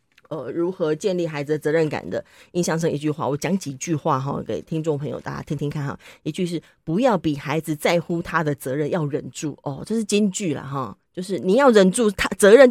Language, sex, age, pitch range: Chinese, female, 20-39, 155-225 Hz